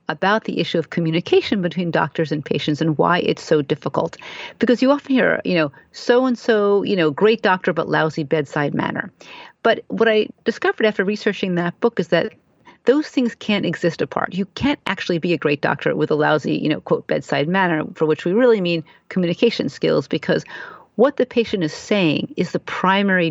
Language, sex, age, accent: English, female, 40-59, American